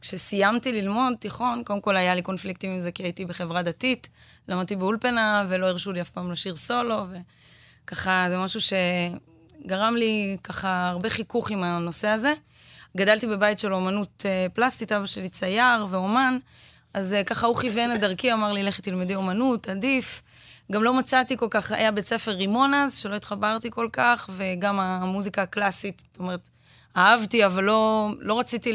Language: Hebrew